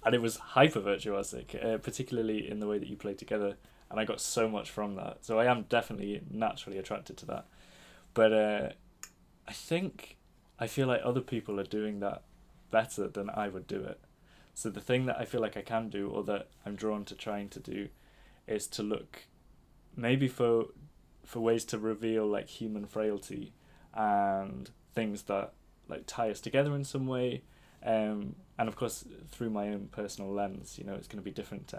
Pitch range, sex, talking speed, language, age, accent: 100-115 Hz, male, 195 wpm, Danish, 10-29, British